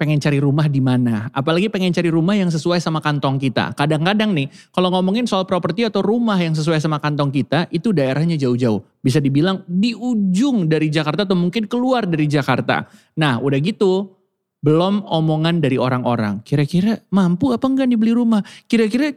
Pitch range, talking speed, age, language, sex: 155-205 Hz, 170 wpm, 30-49, Indonesian, male